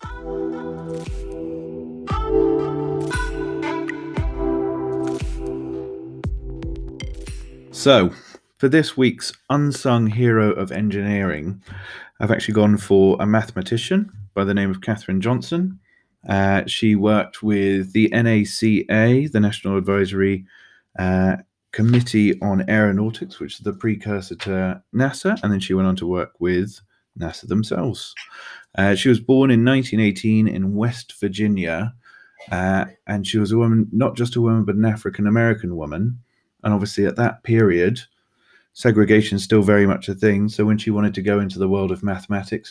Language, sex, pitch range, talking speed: English, male, 95-110 Hz, 135 wpm